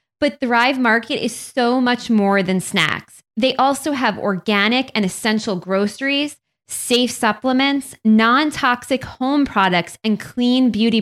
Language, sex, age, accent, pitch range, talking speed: English, female, 20-39, American, 200-260 Hz, 130 wpm